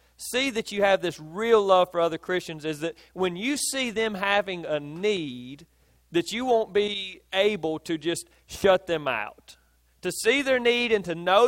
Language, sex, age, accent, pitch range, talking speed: English, male, 40-59, American, 145-205 Hz, 190 wpm